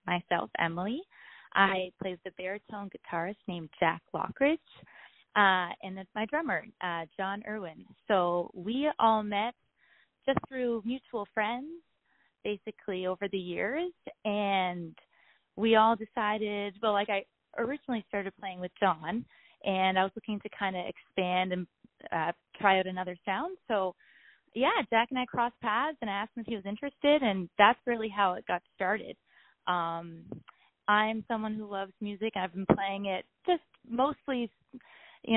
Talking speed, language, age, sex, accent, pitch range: 155 wpm, English, 20-39, female, American, 185-230 Hz